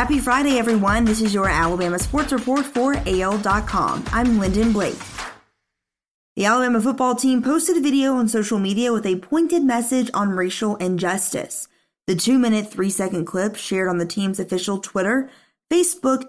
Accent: American